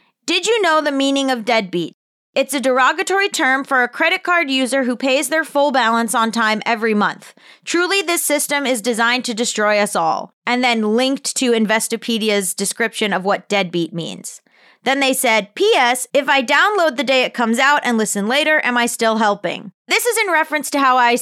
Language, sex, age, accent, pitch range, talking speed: English, female, 20-39, American, 230-305 Hz, 200 wpm